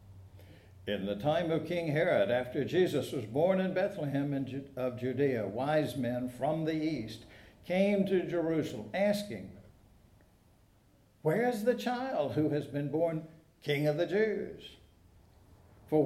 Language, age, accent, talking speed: English, 60-79, American, 135 wpm